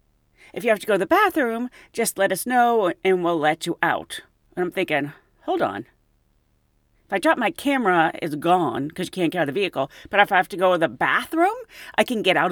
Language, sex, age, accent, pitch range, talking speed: English, female, 40-59, American, 170-260 Hz, 240 wpm